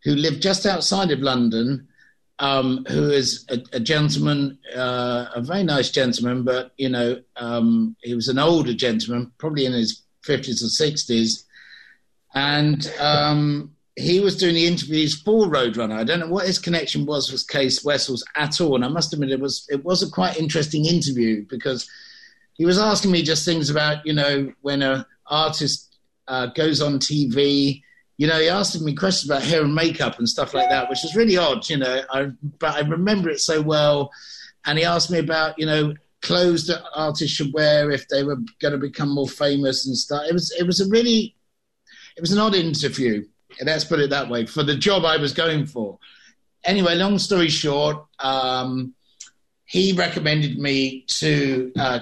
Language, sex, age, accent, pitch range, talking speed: English, male, 50-69, British, 135-170 Hz, 190 wpm